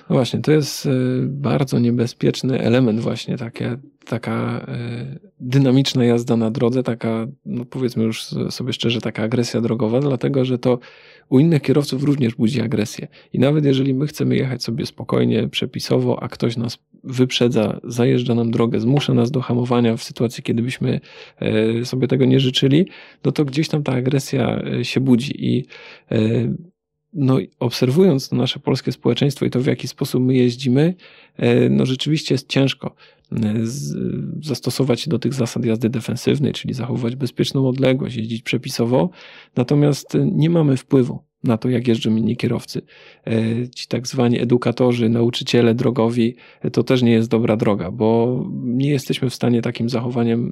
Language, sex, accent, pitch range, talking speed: Polish, male, native, 115-135 Hz, 150 wpm